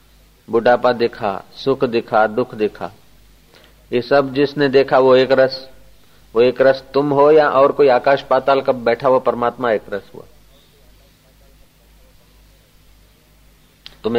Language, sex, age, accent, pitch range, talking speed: Hindi, male, 50-69, native, 110-135 Hz, 130 wpm